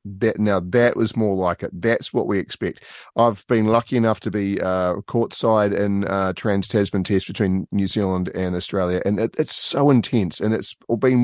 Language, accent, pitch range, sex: English, Australian, 90-110 Hz, male